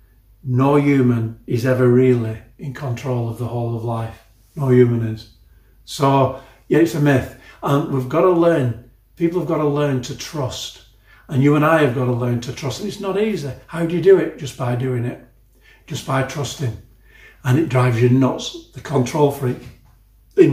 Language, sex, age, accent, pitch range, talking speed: English, male, 40-59, British, 120-145 Hz, 195 wpm